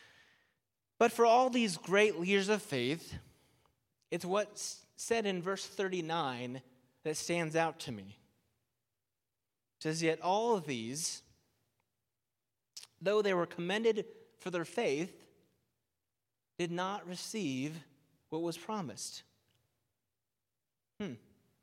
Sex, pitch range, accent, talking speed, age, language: male, 120-200 Hz, American, 110 wpm, 30-49, English